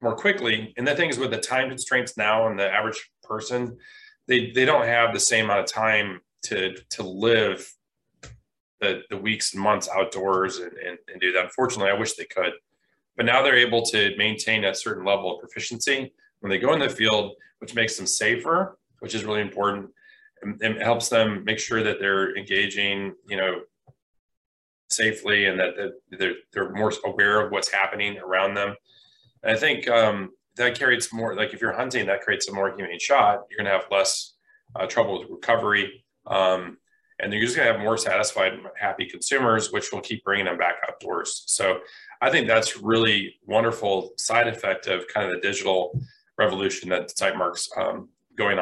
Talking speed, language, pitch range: 190 wpm, English, 100-120 Hz